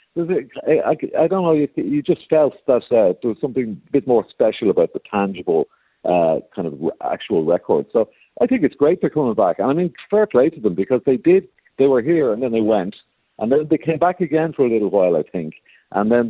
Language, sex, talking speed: English, male, 230 wpm